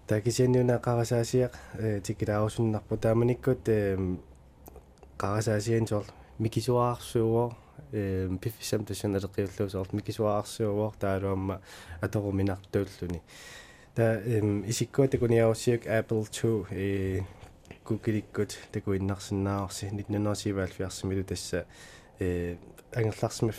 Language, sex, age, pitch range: English, male, 20-39, 95-110 Hz